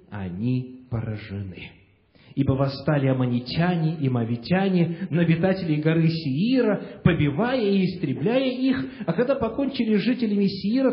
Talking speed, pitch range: 110 wpm, 150-210 Hz